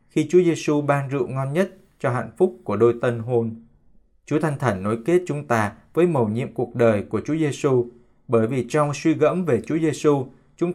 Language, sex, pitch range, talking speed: Vietnamese, male, 115-145 Hz, 210 wpm